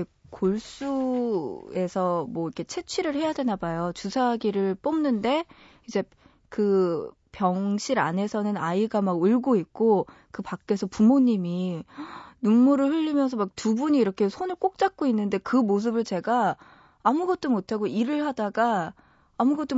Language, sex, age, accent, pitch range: Korean, female, 20-39, native, 180-250 Hz